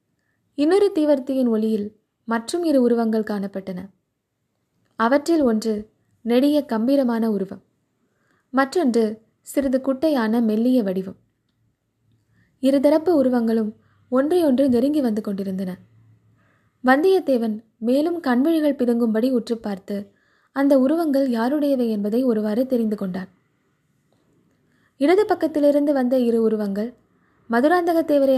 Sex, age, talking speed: female, 20-39, 90 wpm